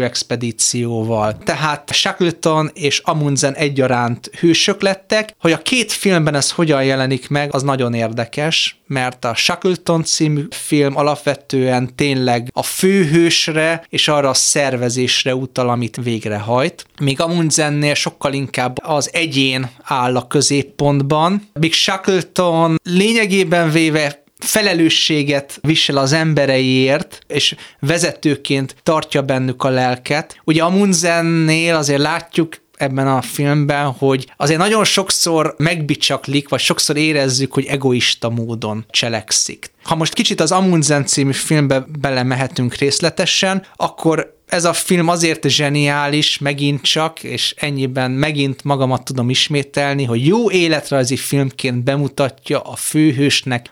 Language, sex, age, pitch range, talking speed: Hungarian, male, 30-49, 130-165 Hz, 120 wpm